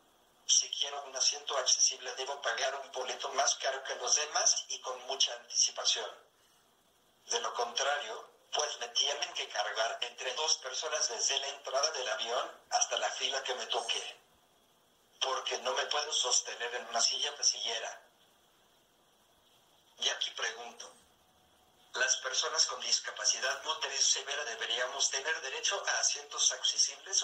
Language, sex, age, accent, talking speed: Spanish, male, 50-69, Mexican, 140 wpm